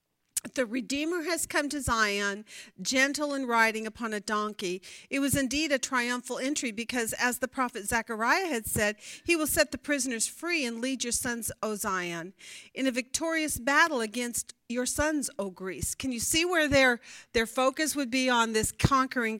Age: 40-59